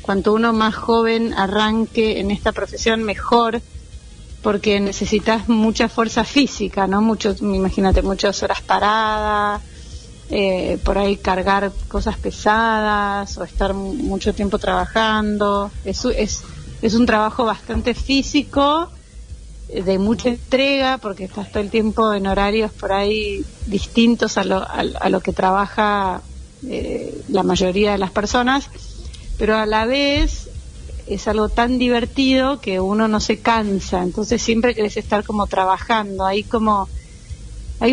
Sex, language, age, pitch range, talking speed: female, Spanish, 30-49, 195-230 Hz, 130 wpm